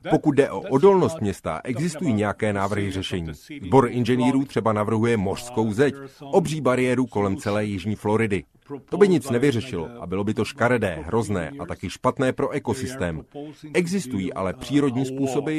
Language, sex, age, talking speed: Czech, male, 30-49, 155 wpm